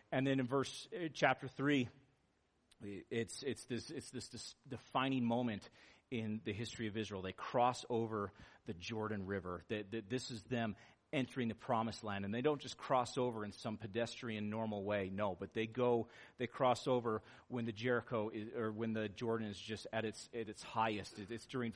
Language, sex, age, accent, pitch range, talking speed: English, male, 40-59, American, 100-120 Hz, 190 wpm